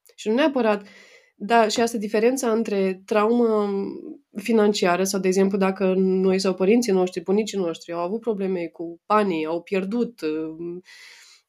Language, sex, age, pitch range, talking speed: Romanian, female, 20-39, 190-235 Hz, 150 wpm